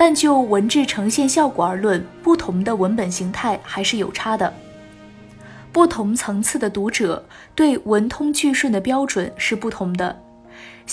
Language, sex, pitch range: Chinese, female, 195-280 Hz